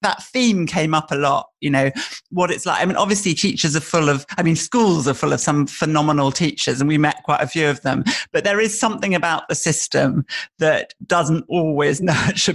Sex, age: male, 40-59